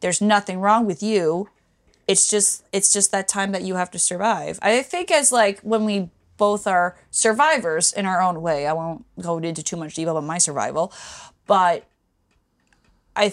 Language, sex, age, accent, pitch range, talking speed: English, female, 20-39, American, 170-215 Hz, 185 wpm